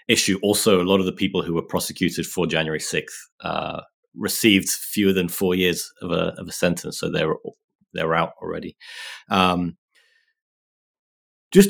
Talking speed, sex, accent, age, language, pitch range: 160 wpm, male, British, 20-39, English, 95-110 Hz